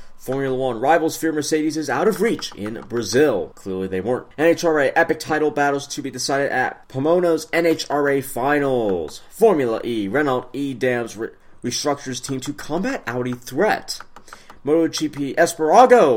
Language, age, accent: English, 30-49, American